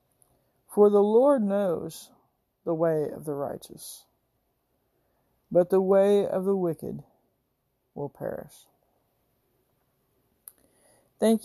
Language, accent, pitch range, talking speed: English, American, 155-180 Hz, 95 wpm